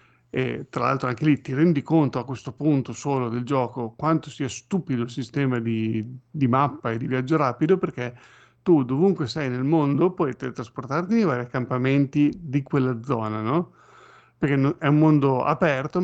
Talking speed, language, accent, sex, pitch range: 175 wpm, Italian, native, male, 130-165 Hz